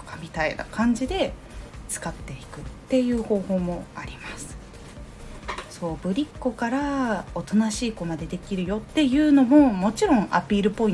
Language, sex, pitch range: Japanese, female, 165-255 Hz